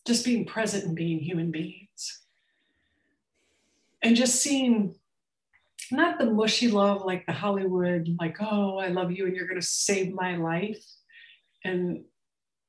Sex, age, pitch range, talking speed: female, 50-69, 185-235 Hz, 135 wpm